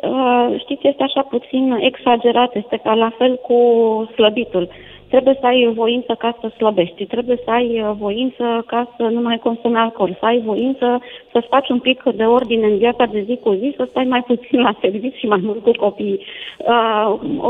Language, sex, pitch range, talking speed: Romanian, female, 225-285 Hz, 190 wpm